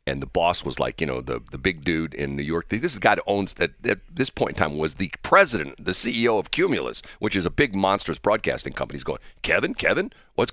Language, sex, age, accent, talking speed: English, male, 50-69, American, 255 wpm